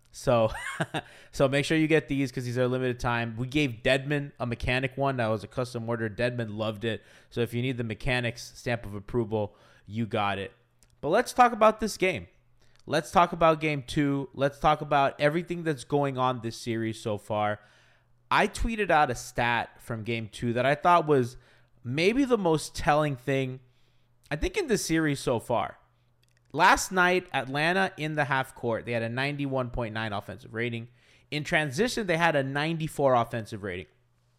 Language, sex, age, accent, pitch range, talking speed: English, male, 20-39, American, 120-150 Hz, 185 wpm